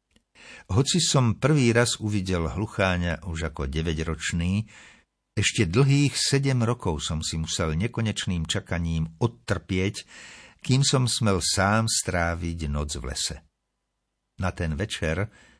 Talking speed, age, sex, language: 120 wpm, 60-79, male, Slovak